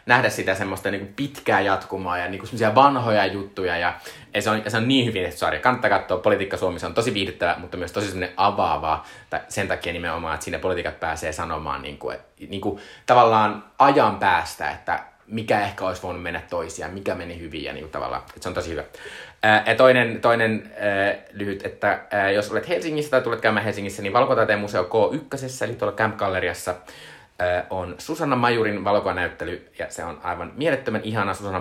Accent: native